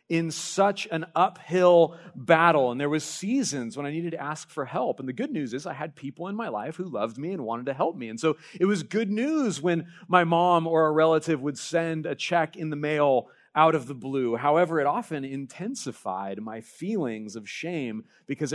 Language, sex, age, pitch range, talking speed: English, male, 40-59, 130-180 Hz, 215 wpm